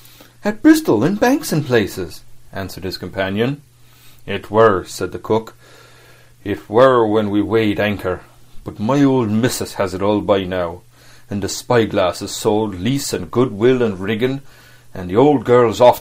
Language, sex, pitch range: Korean, male, 100-125 Hz